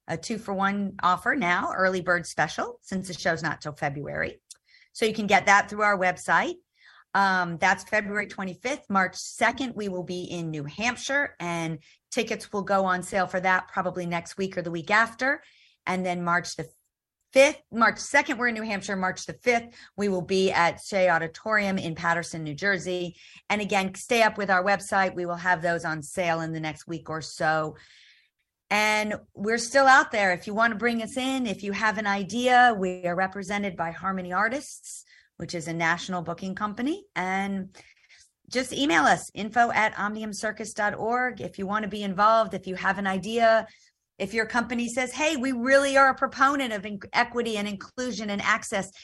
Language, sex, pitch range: English, female, 180-235 Hz